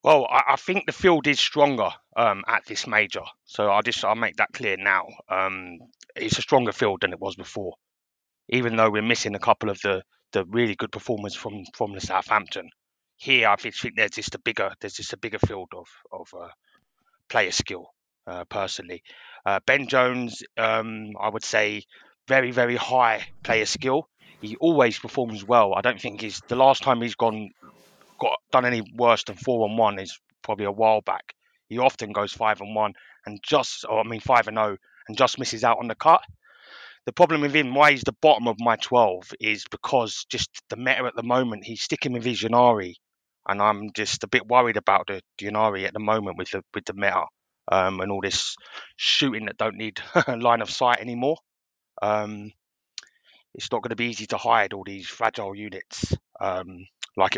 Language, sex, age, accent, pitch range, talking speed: English, male, 20-39, British, 105-125 Hz, 200 wpm